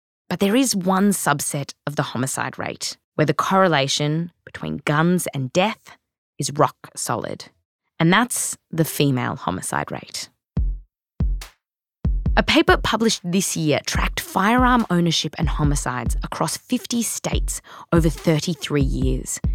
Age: 20-39